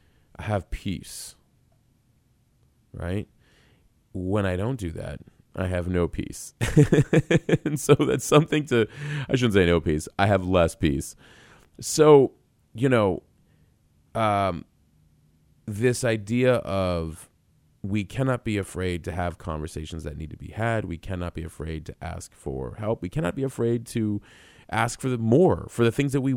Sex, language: male, English